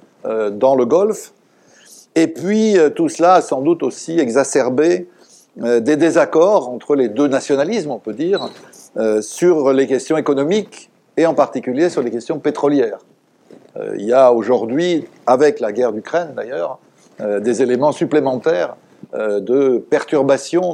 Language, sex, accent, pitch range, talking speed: French, male, French, 125-170 Hz, 135 wpm